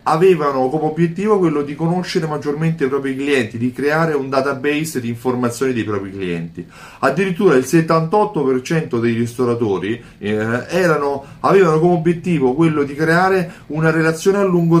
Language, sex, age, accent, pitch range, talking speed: Italian, male, 30-49, native, 120-170 Hz, 145 wpm